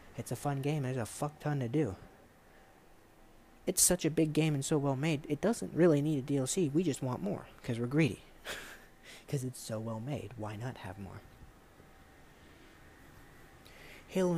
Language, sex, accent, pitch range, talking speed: English, male, American, 120-155 Hz, 175 wpm